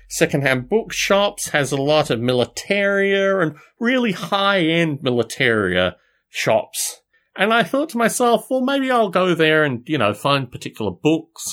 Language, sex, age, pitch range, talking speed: English, male, 30-49, 145-210 Hz, 145 wpm